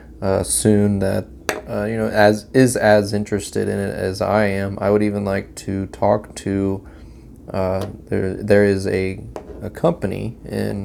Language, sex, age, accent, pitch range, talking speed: English, male, 20-39, American, 95-105 Hz, 165 wpm